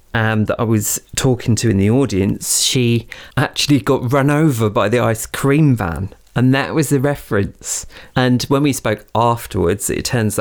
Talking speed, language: 180 wpm, English